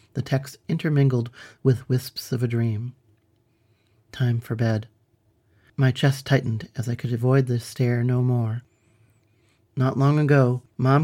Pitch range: 120-145 Hz